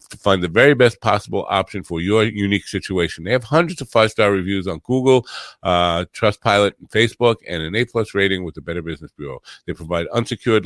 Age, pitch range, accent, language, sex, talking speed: 50-69, 90-115 Hz, American, English, male, 205 wpm